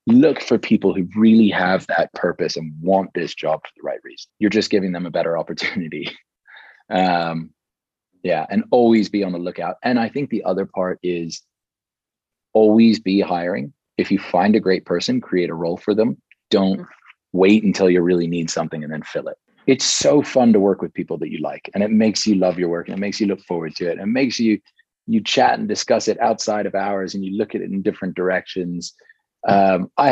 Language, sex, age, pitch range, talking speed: English, male, 30-49, 90-105 Hz, 215 wpm